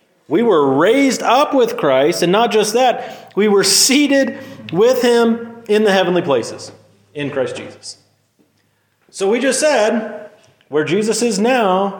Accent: American